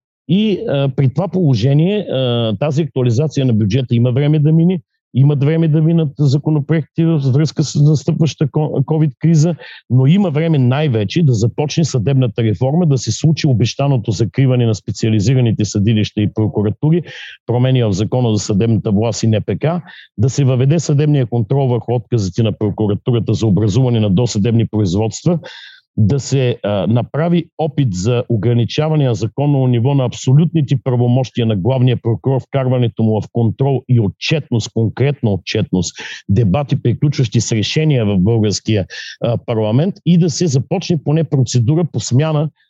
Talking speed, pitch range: 145 wpm, 115-155 Hz